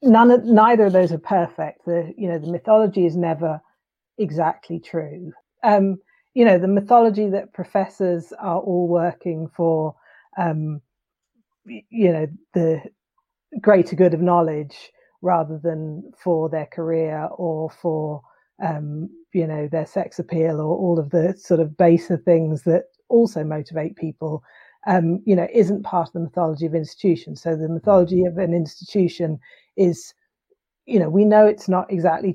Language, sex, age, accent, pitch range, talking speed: English, female, 40-59, British, 160-190 Hz, 155 wpm